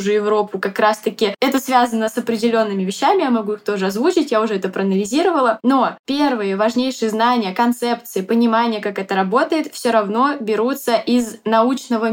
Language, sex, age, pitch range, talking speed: Russian, female, 10-29, 210-255 Hz, 160 wpm